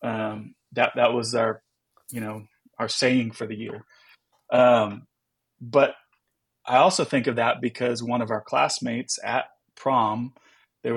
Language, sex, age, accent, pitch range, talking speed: English, male, 30-49, American, 110-125 Hz, 150 wpm